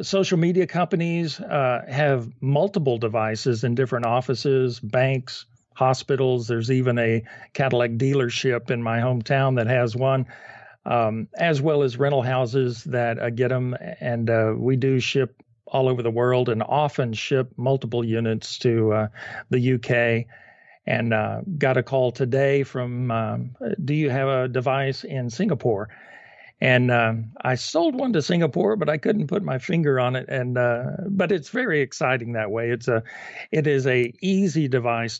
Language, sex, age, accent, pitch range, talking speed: English, male, 50-69, American, 120-135 Hz, 165 wpm